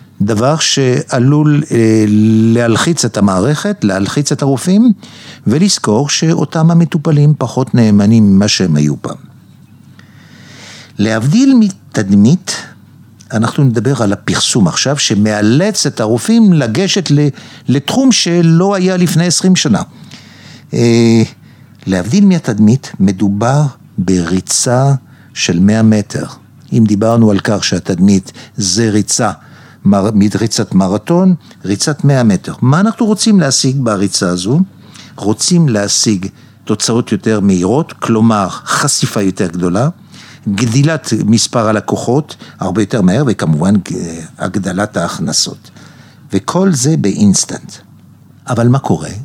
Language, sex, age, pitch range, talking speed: Hebrew, male, 60-79, 110-160 Hz, 105 wpm